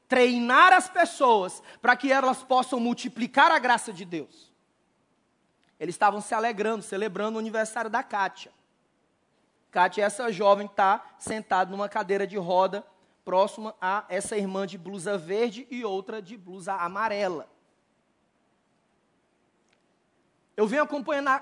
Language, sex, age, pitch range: Portuguese, male, 20-39, 210-255 Hz